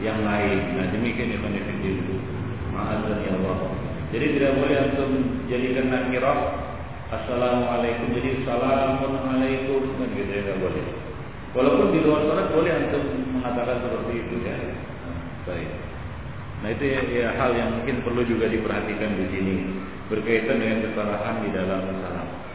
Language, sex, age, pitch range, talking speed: Malay, male, 40-59, 105-135 Hz, 135 wpm